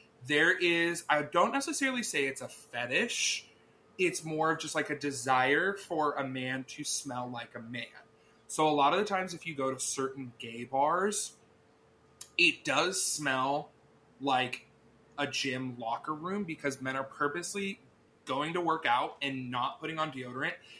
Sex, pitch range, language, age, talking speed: male, 125-155 Hz, English, 20-39, 165 wpm